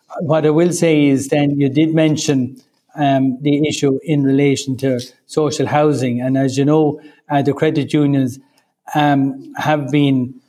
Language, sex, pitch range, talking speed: English, male, 135-150 Hz, 160 wpm